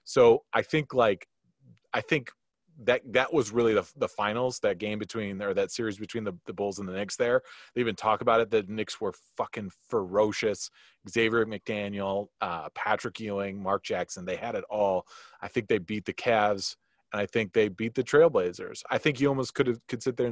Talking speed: 205 wpm